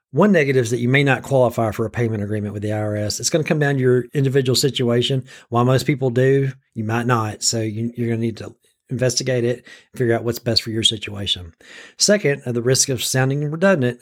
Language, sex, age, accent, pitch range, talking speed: English, male, 40-59, American, 115-140 Hz, 225 wpm